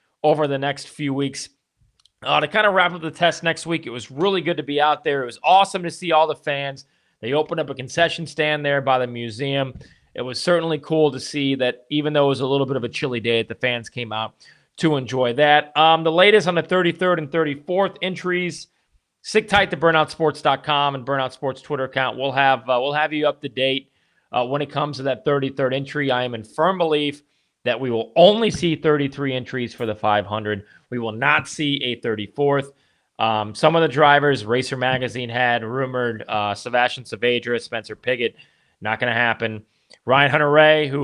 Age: 40-59